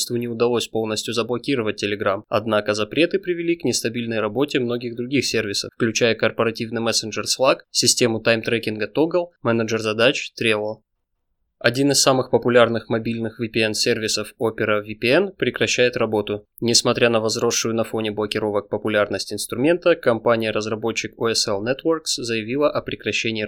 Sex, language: male, Russian